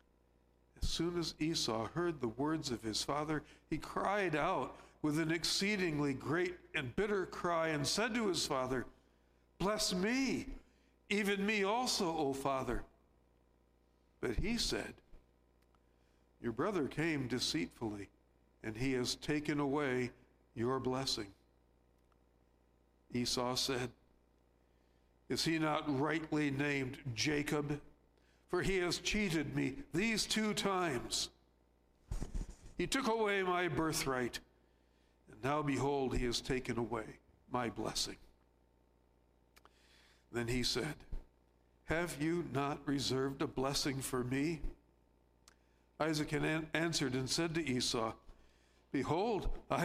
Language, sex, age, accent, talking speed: English, male, 60-79, American, 115 wpm